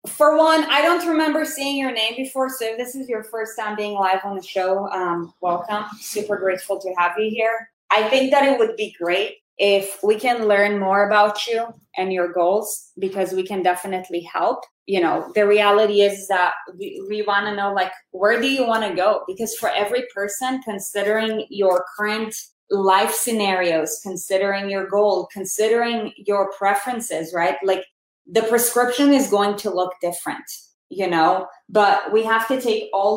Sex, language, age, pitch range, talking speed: female, English, 20-39, 190-235 Hz, 185 wpm